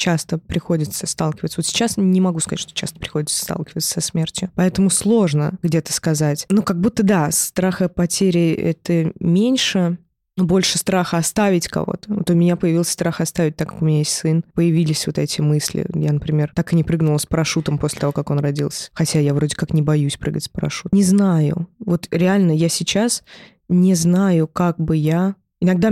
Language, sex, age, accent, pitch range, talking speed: Russian, female, 20-39, native, 160-185 Hz, 190 wpm